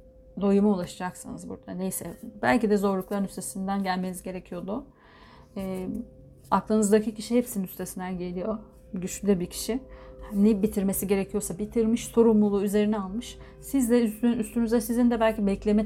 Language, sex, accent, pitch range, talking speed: Turkish, female, native, 185-220 Hz, 125 wpm